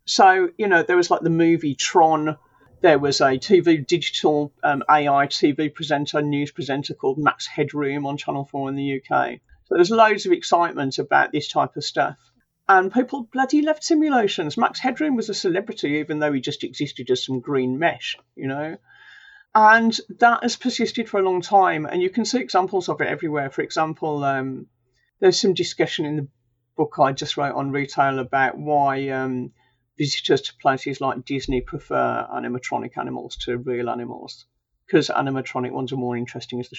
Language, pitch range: English, 130-205 Hz